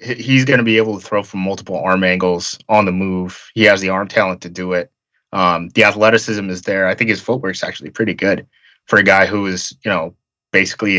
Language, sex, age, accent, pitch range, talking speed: English, male, 20-39, American, 95-115 Hz, 235 wpm